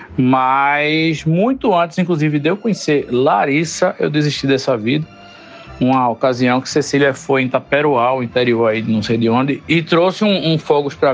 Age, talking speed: 50-69, 170 wpm